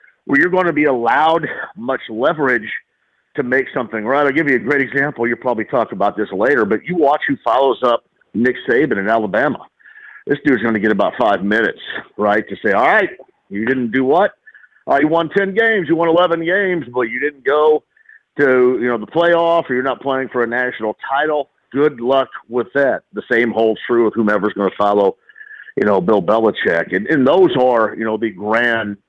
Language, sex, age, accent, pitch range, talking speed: English, male, 50-69, American, 100-140 Hz, 215 wpm